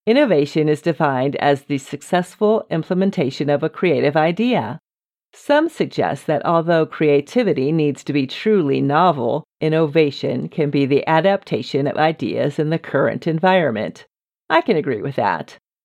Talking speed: 140 wpm